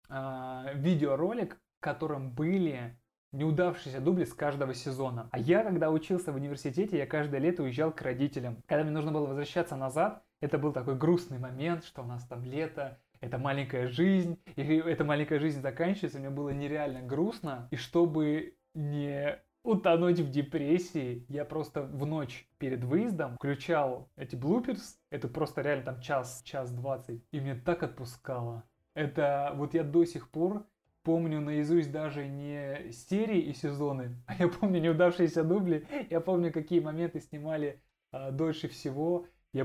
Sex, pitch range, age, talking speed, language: male, 135-160 Hz, 20-39, 155 wpm, Russian